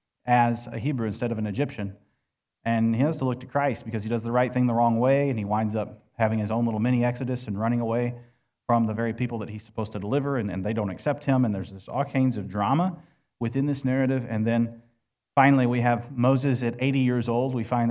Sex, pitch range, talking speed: male, 105-130 Hz, 240 wpm